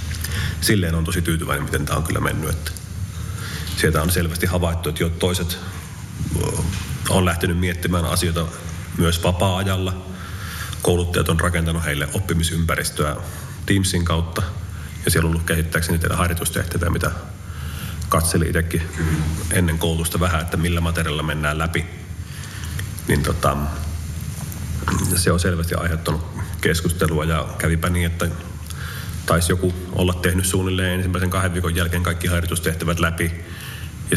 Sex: male